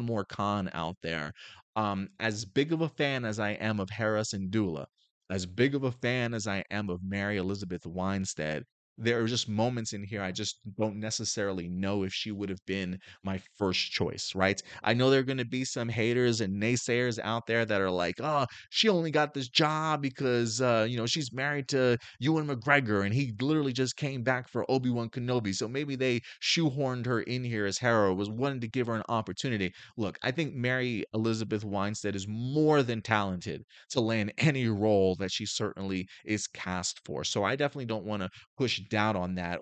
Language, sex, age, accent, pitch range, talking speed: English, male, 30-49, American, 100-130 Hz, 205 wpm